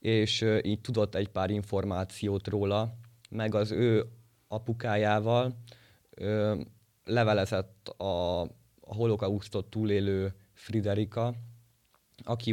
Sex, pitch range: male, 95-110 Hz